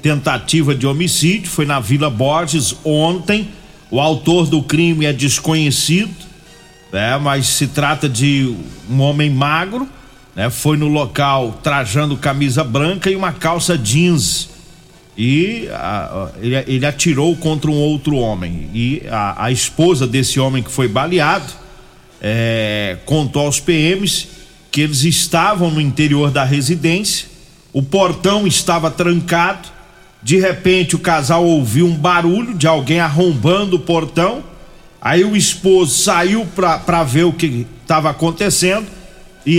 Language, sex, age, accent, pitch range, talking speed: Portuguese, male, 40-59, Brazilian, 140-175 Hz, 130 wpm